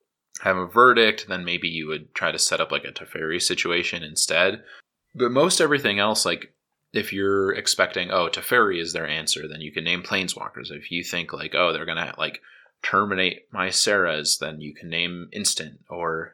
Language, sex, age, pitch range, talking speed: English, male, 20-39, 85-95 Hz, 185 wpm